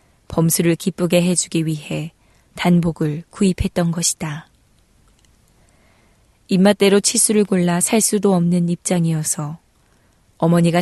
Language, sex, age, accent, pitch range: Korean, female, 20-39, native, 160-190 Hz